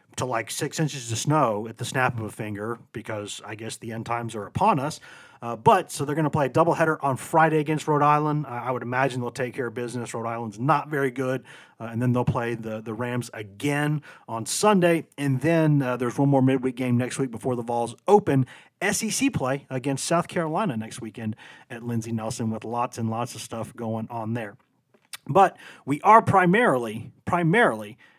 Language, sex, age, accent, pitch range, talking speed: English, male, 40-59, American, 115-145 Hz, 210 wpm